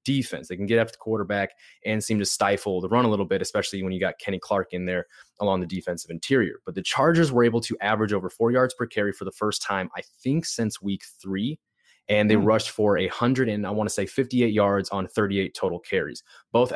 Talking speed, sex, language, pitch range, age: 240 wpm, male, English, 95-115 Hz, 20-39